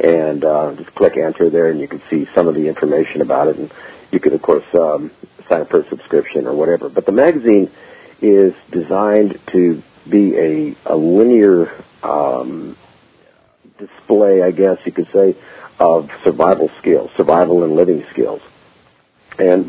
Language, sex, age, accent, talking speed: English, male, 50-69, American, 165 wpm